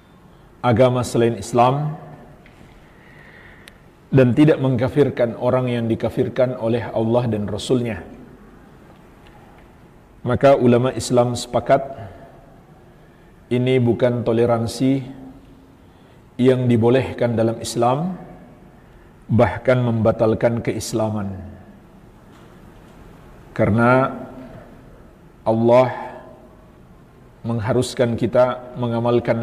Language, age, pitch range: Indonesian, 50-69, 115-130 Hz